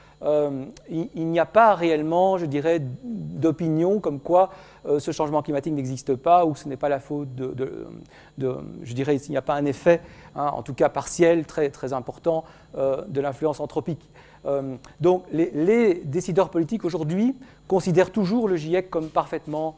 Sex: male